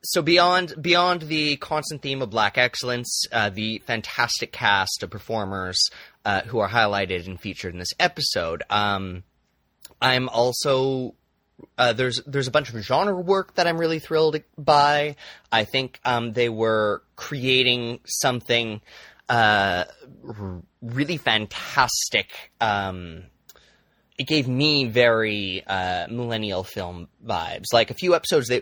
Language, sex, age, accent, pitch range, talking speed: English, male, 20-39, American, 100-135 Hz, 130 wpm